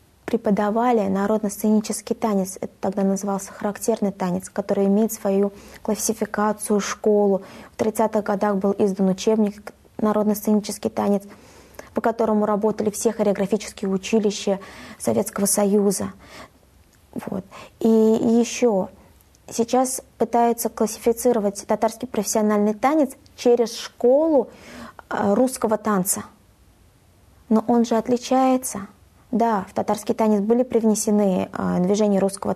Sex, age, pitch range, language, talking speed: female, 20-39, 200-225 Hz, Russian, 100 wpm